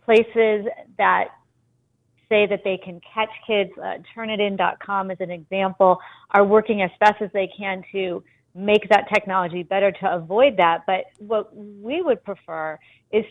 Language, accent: English, American